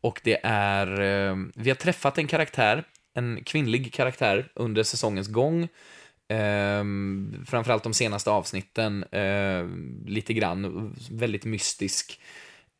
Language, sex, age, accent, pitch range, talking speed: Swedish, male, 20-39, native, 100-120 Hz, 105 wpm